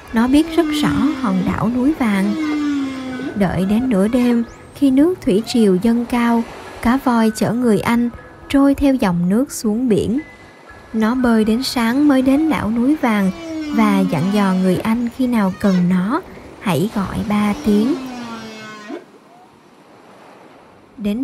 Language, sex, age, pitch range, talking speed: Vietnamese, male, 10-29, 205-270 Hz, 145 wpm